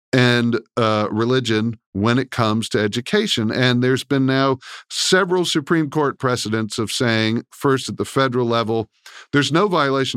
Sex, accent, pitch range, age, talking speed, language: male, American, 110-135 Hz, 50-69, 155 wpm, English